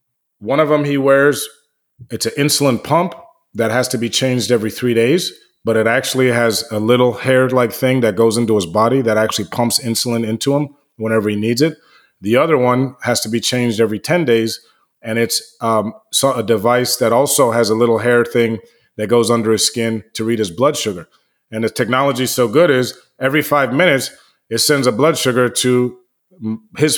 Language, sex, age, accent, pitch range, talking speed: English, male, 30-49, American, 115-130 Hz, 200 wpm